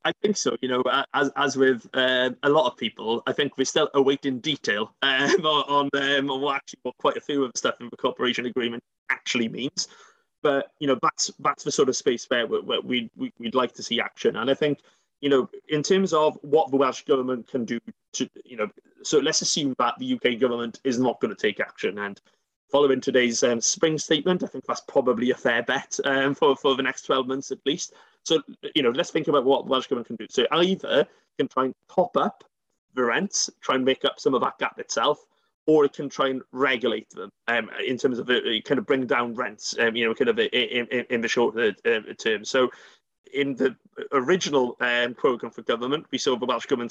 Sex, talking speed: male, 230 wpm